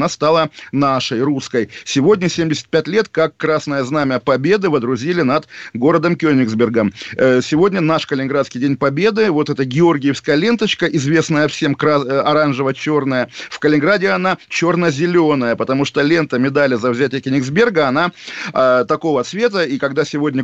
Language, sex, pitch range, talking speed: Russian, male, 140-170 Hz, 130 wpm